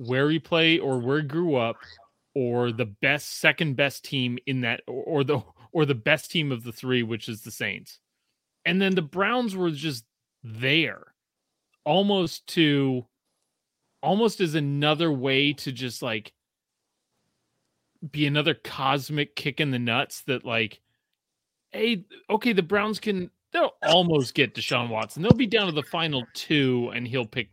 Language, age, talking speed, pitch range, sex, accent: English, 30-49, 165 wpm, 120-160 Hz, male, American